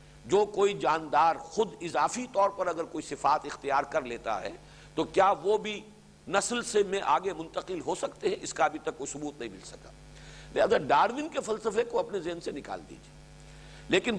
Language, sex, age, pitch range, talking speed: English, male, 50-69, 140-210 Hz, 195 wpm